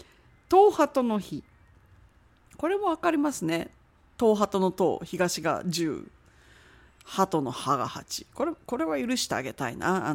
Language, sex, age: Japanese, female, 40-59